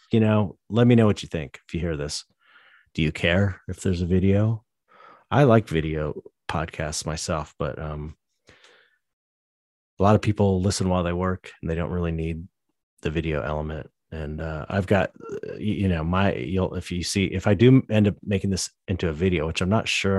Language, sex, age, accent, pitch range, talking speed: English, male, 30-49, American, 80-95 Hz, 200 wpm